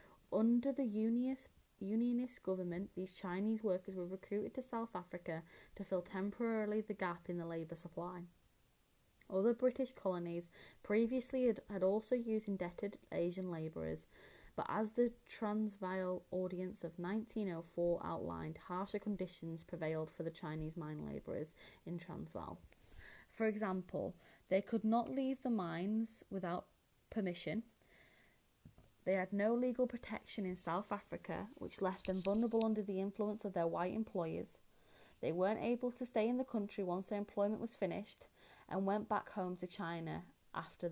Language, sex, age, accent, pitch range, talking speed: English, female, 30-49, British, 175-220 Hz, 145 wpm